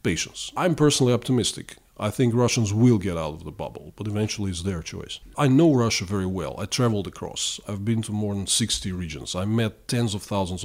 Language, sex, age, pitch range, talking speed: English, male, 40-59, 95-120 Hz, 215 wpm